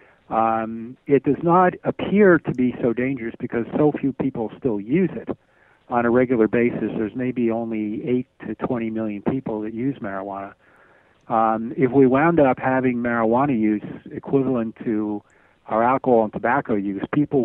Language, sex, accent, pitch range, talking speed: English, male, American, 110-130 Hz, 160 wpm